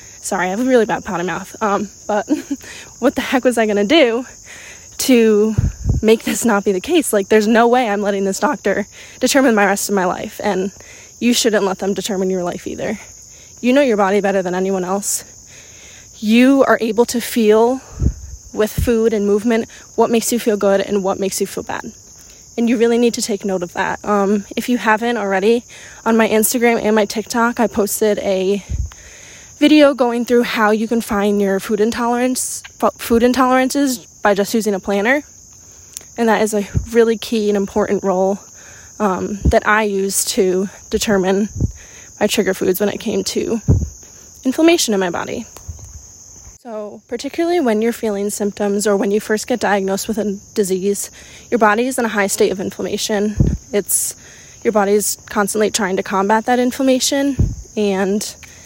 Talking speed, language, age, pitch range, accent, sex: 180 wpm, English, 20-39, 200-235 Hz, American, female